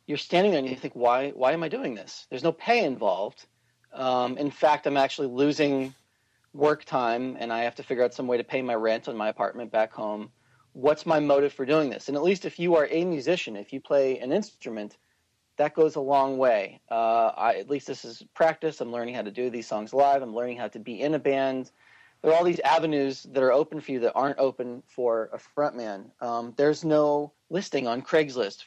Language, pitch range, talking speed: English, 125-150 Hz, 230 wpm